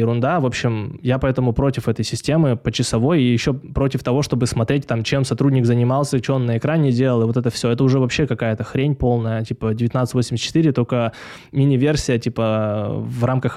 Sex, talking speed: male, 185 wpm